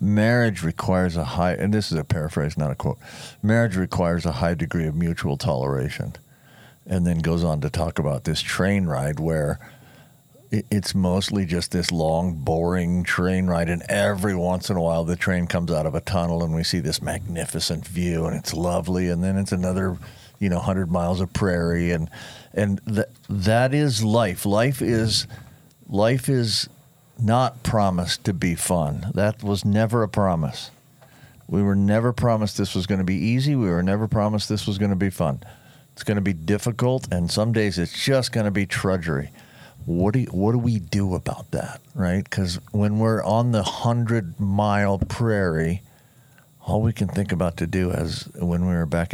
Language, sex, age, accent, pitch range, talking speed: English, male, 50-69, American, 85-110 Hz, 190 wpm